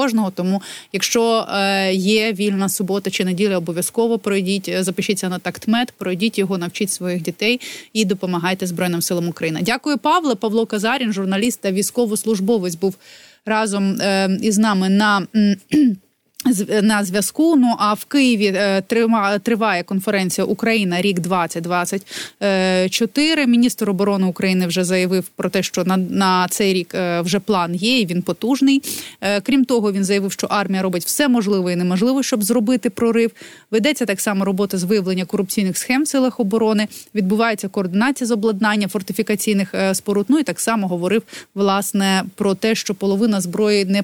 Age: 20-39